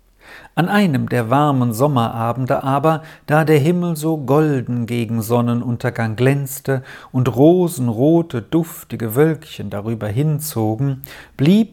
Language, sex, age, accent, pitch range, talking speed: German, male, 50-69, German, 125-170 Hz, 105 wpm